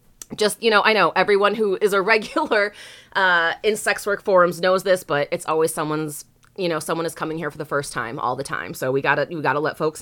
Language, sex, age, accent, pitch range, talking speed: English, female, 30-49, American, 165-220 Hz, 260 wpm